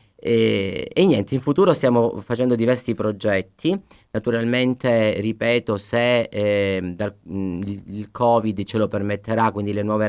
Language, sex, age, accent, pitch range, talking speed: Italian, male, 30-49, native, 100-120 Hz, 135 wpm